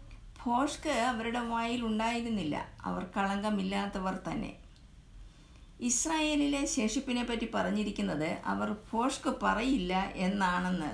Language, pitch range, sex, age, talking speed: Malayalam, 180-235 Hz, female, 50-69, 75 wpm